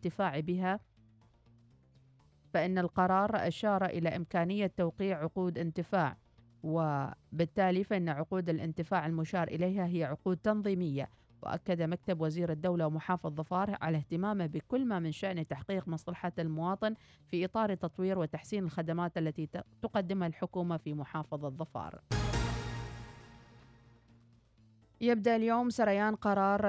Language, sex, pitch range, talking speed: Arabic, female, 155-190 Hz, 110 wpm